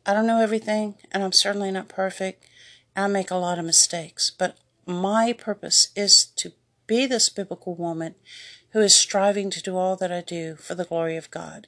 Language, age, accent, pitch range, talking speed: English, 60-79, American, 175-225 Hz, 200 wpm